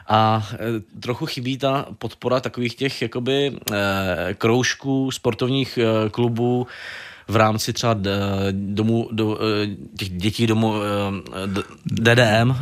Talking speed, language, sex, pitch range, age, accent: 70 wpm, Czech, male, 105-125 Hz, 20-39, native